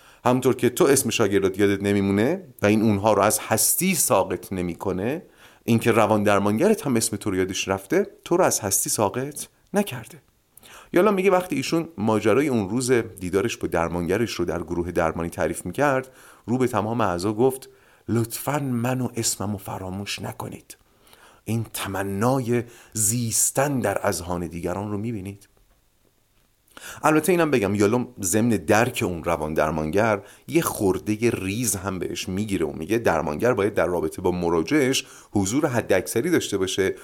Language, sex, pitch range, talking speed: Persian, male, 100-140 Hz, 155 wpm